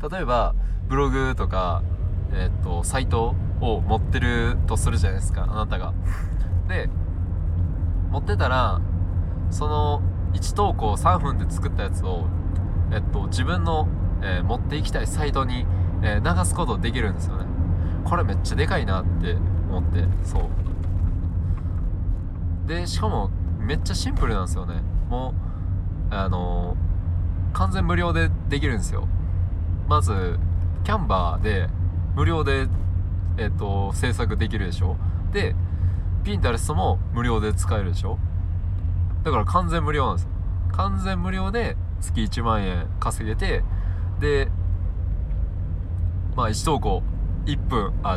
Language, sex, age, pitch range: Japanese, male, 20-39, 85-90 Hz